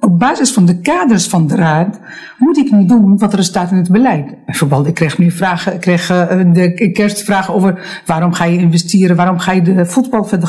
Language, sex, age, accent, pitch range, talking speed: Dutch, female, 60-79, Dutch, 175-255 Hz, 205 wpm